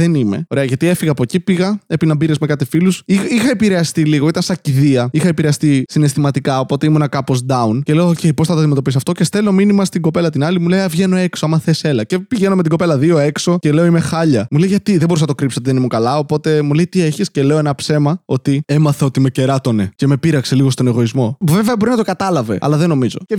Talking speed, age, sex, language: 255 wpm, 20-39, male, Greek